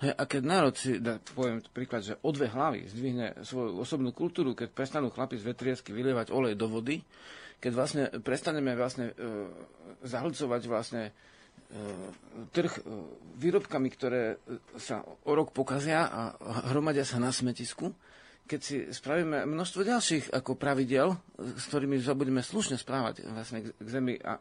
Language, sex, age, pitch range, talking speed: Slovak, male, 40-59, 120-145 Hz, 145 wpm